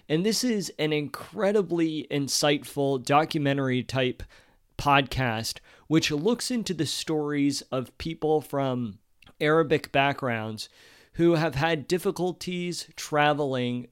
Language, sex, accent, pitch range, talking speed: English, male, American, 130-160 Hz, 100 wpm